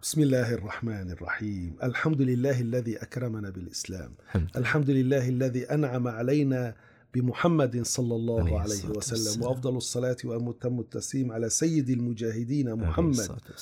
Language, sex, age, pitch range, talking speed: Arabic, male, 40-59, 120-150 Hz, 120 wpm